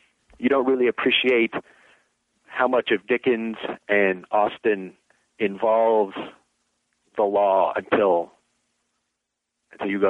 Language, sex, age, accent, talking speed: English, male, 40-59, American, 100 wpm